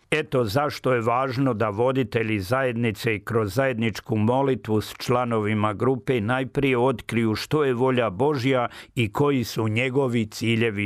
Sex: male